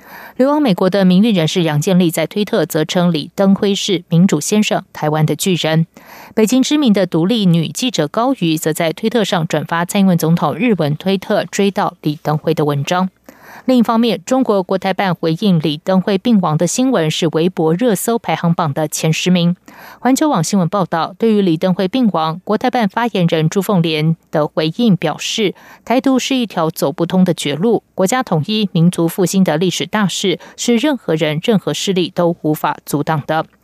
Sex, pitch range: female, 165-220 Hz